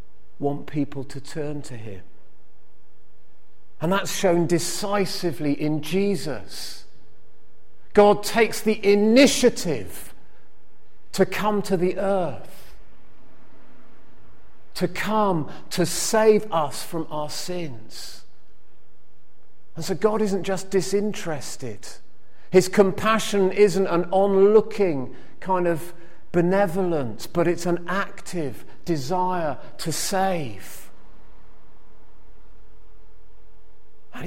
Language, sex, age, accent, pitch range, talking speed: English, male, 40-59, British, 145-190 Hz, 90 wpm